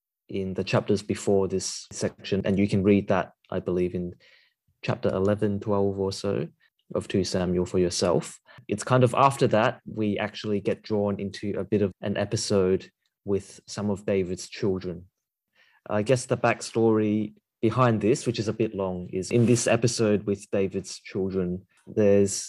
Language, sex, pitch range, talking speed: English, male, 95-110 Hz, 170 wpm